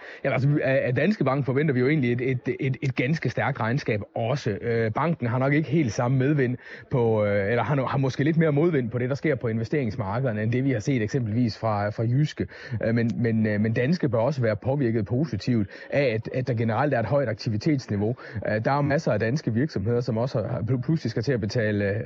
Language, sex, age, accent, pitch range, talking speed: Danish, male, 30-49, native, 115-140 Hz, 220 wpm